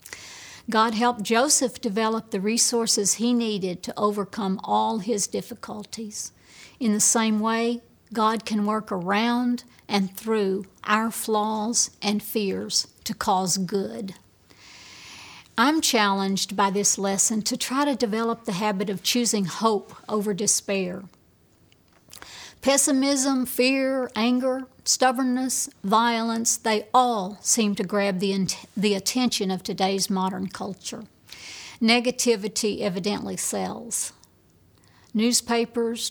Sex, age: female, 60-79